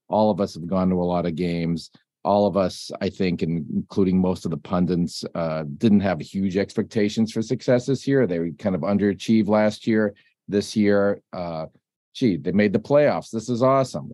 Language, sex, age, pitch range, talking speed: English, male, 40-59, 90-110 Hz, 205 wpm